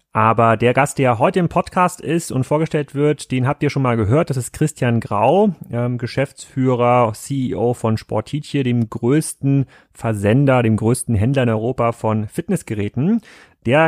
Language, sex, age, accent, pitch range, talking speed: German, male, 30-49, German, 110-135 Hz, 155 wpm